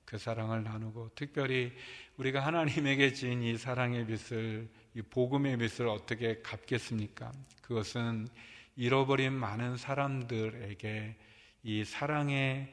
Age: 40-59